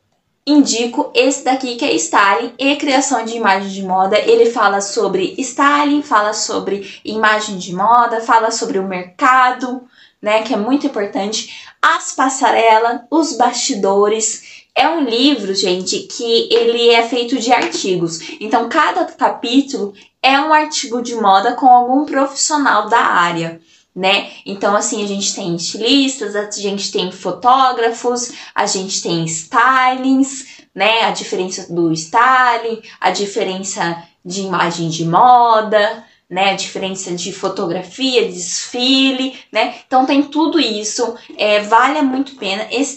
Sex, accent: female, Brazilian